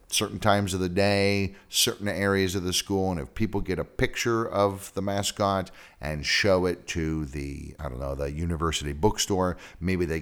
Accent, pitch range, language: American, 80-100 Hz, English